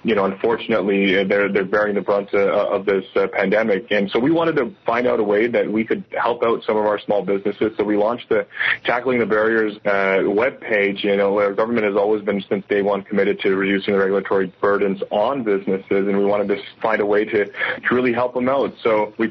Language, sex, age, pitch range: English, male, 20-39, 100-110 Hz